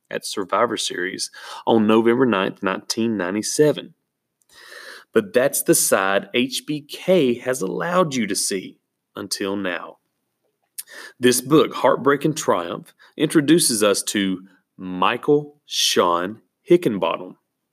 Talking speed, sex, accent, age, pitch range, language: 100 wpm, male, American, 30-49, 100-165 Hz, English